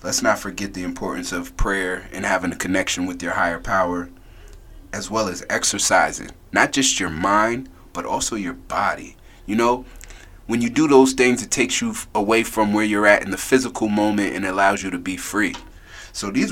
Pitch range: 95-125 Hz